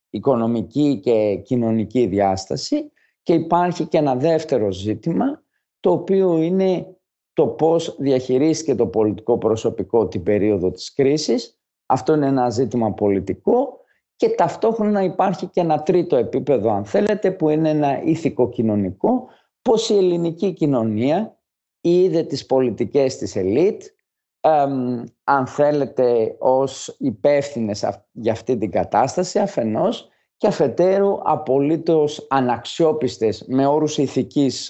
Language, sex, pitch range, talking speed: Greek, male, 115-175 Hz, 115 wpm